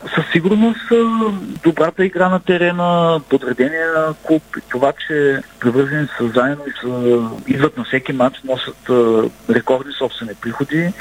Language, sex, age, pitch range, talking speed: Bulgarian, male, 40-59, 120-145 Hz, 125 wpm